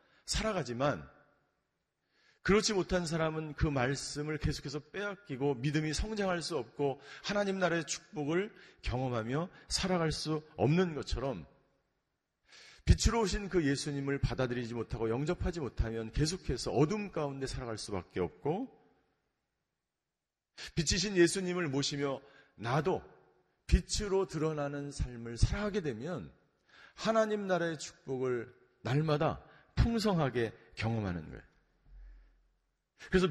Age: 40-59